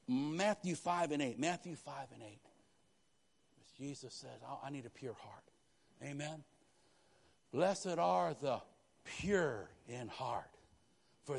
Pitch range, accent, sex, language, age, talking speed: 130-190 Hz, American, male, English, 60-79, 120 wpm